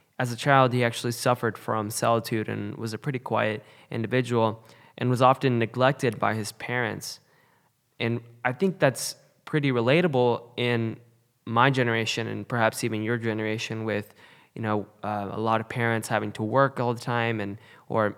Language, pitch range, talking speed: English, 110-135 Hz, 170 wpm